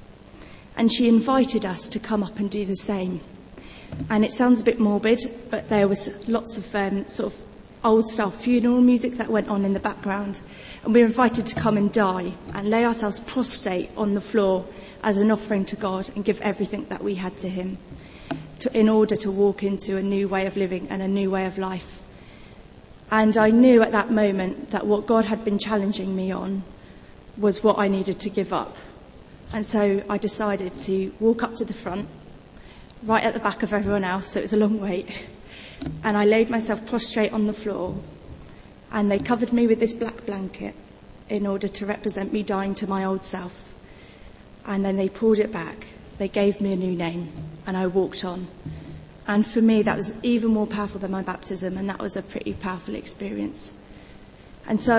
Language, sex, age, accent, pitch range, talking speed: English, female, 30-49, British, 195-220 Hz, 200 wpm